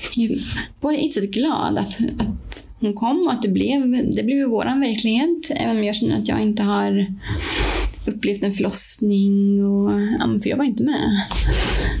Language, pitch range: English, 195-240 Hz